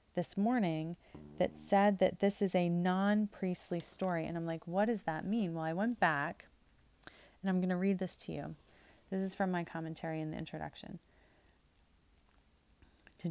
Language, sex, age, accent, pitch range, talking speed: English, female, 30-49, American, 165-190 Hz, 170 wpm